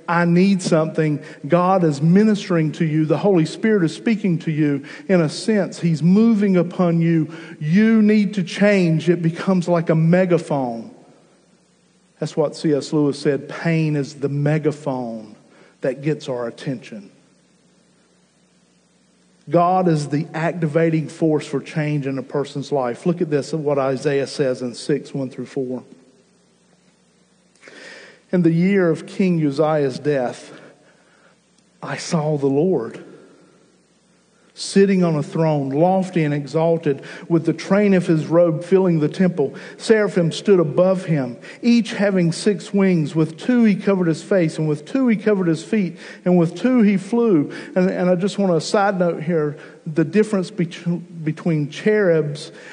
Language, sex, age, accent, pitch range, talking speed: English, male, 50-69, American, 150-185 Hz, 150 wpm